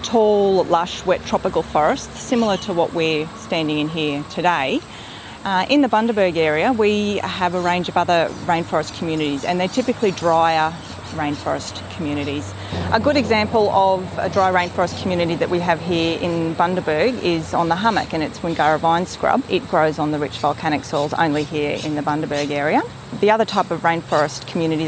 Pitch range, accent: 155-190 Hz, Australian